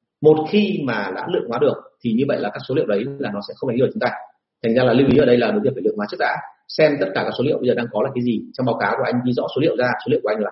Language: Vietnamese